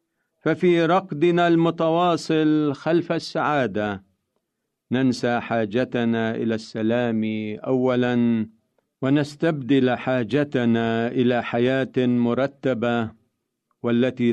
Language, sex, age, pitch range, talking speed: Arabic, male, 50-69, 110-145 Hz, 65 wpm